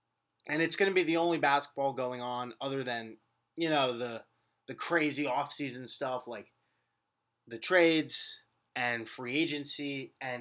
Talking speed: 150 wpm